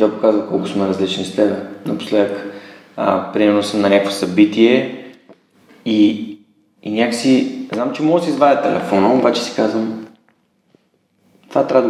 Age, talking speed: 20-39, 145 wpm